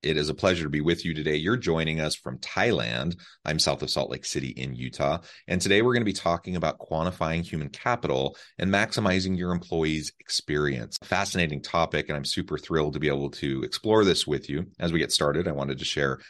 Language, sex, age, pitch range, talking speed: English, male, 30-49, 75-95 Hz, 220 wpm